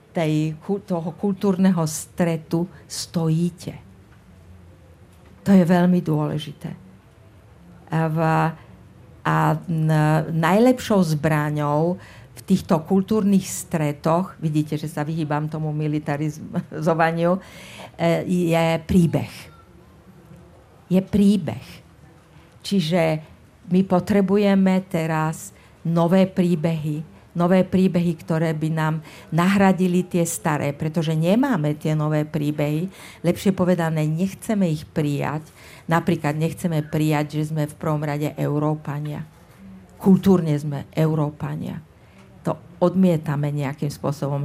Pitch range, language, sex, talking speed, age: 150-175 Hz, Czech, female, 95 wpm, 50-69